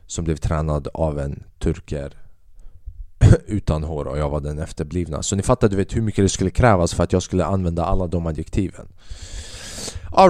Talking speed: 185 wpm